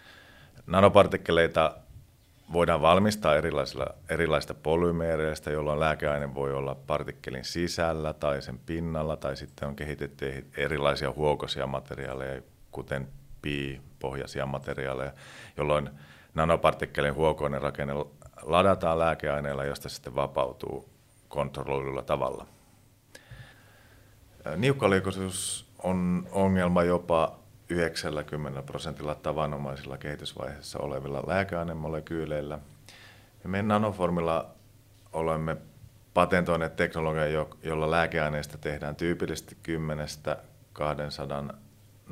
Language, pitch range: Finnish, 70-85 Hz